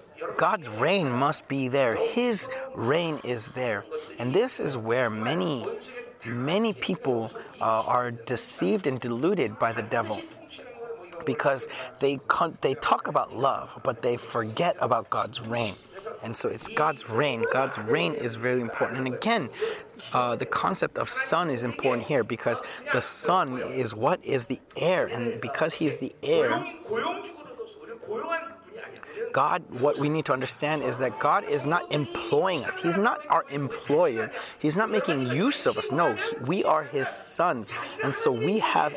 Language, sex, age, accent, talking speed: English, male, 30-49, American, 160 wpm